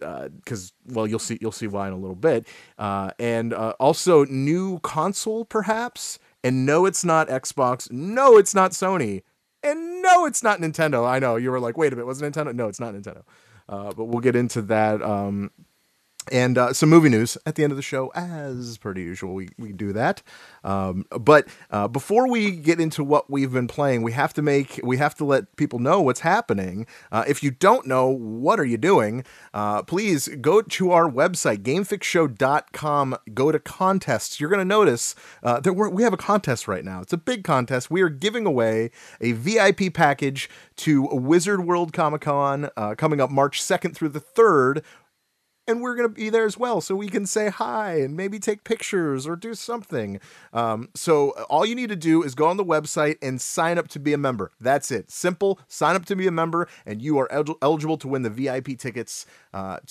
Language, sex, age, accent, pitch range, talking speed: English, male, 30-49, American, 115-180 Hz, 210 wpm